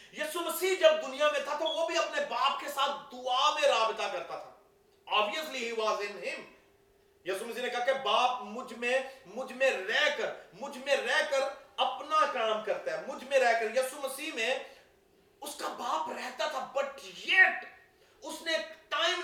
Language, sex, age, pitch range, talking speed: Urdu, male, 30-49, 255-315 Hz, 55 wpm